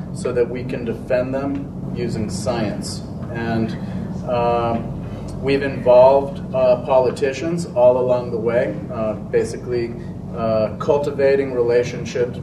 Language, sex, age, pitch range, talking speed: English, male, 30-49, 120-150 Hz, 110 wpm